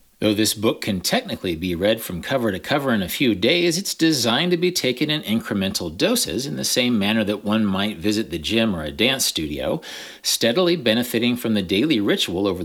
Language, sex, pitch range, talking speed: English, male, 100-135 Hz, 210 wpm